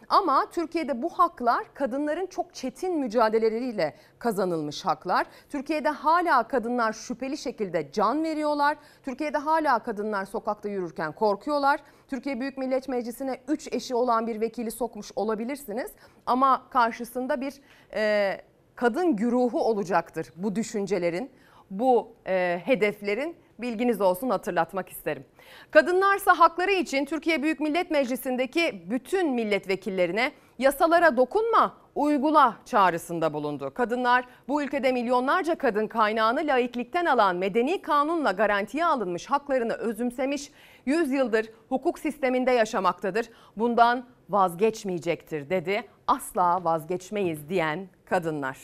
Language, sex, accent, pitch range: Turkish, female, native, 205-285 Hz